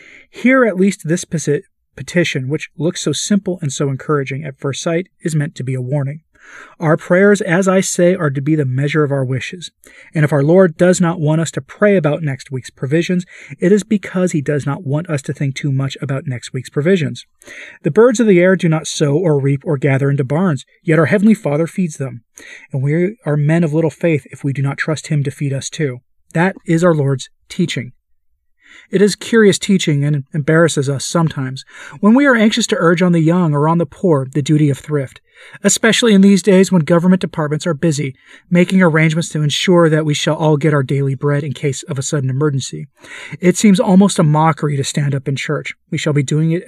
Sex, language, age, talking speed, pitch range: male, English, 30-49, 220 wpm, 140-180 Hz